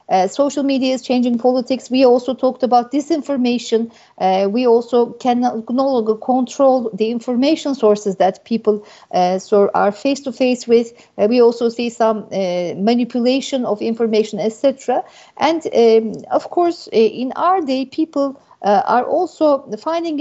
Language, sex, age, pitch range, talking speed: Turkish, female, 50-69, 220-280 Hz, 155 wpm